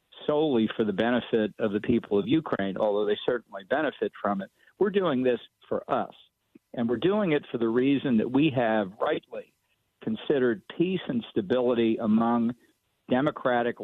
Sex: male